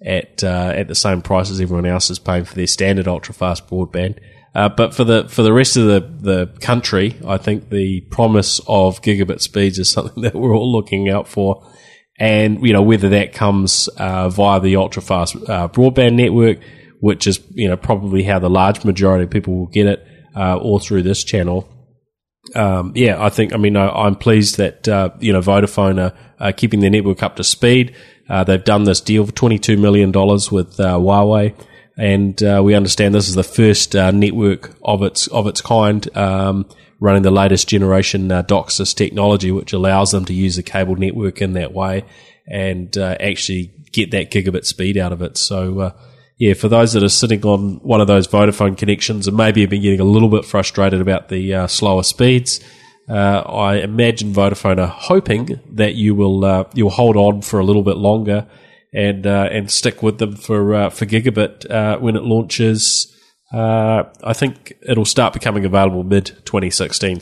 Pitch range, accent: 95-110 Hz, Australian